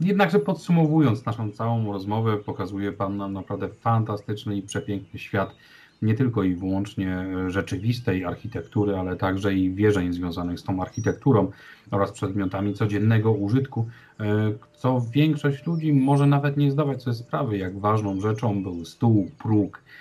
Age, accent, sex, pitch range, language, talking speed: 40-59, native, male, 95-115 Hz, Polish, 140 wpm